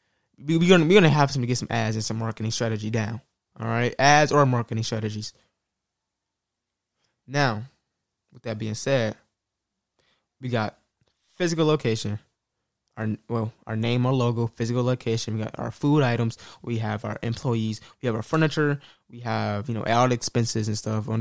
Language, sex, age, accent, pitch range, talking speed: English, male, 20-39, American, 110-135 Hz, 165 wpm